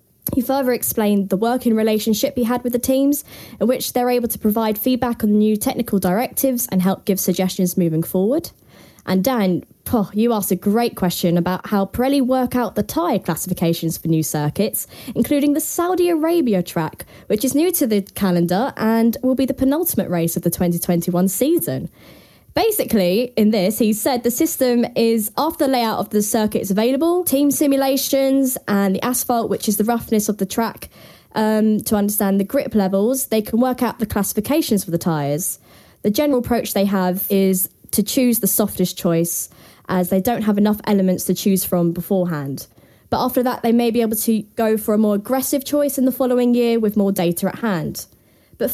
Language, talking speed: English, 190 wpm